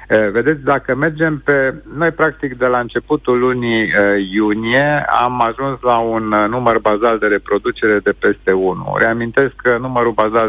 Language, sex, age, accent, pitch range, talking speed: Romanian, male, 50-69, native, 115-140 Hz, 160 wpm